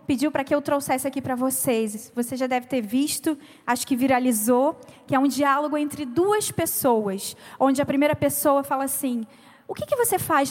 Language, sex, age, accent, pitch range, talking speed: Portuguese, female, 20-39, Brazilian, 250-290 Hz, 195 wpm